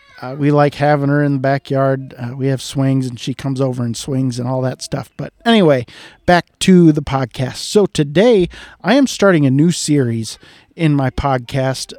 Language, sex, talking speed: English, male, 195 wpm